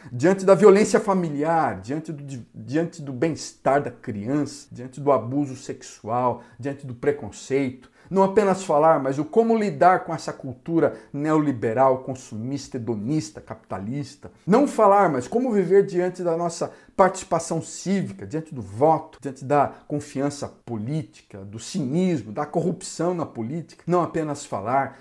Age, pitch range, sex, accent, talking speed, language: 50-69, 125-165 Hz, male, Brazilian, 135 wpm, Portuguese